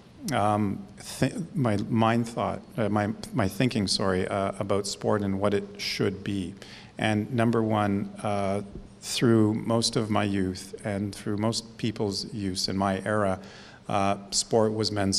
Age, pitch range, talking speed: 50-69, 100-110 Hz, 155 wpm